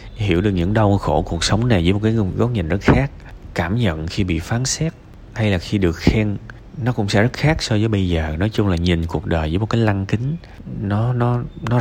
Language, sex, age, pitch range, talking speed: Vietnamese, male, 20-39, 85-115 Hz, 250 wpm